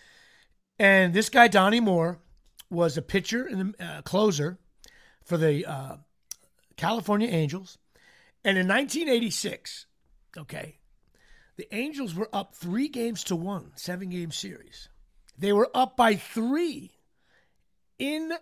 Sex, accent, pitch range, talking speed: male, American, 175-235 Hz, 115 wpm